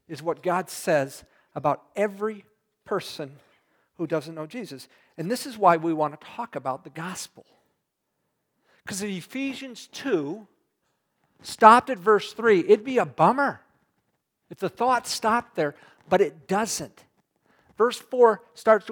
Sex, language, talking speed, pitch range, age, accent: male, English, 145 wpm, 180-240 Hz, 50-69, American